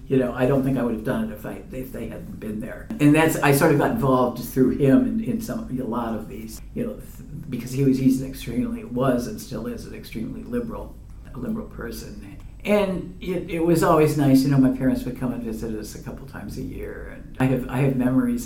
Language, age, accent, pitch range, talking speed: English, 50-69, American, 125-145 Hz, 255 wpm